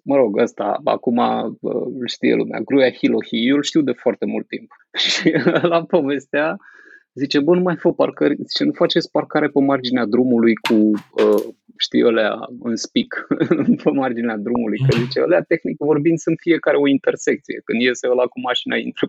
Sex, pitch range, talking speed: male, 120-170 Hz, 180 wpm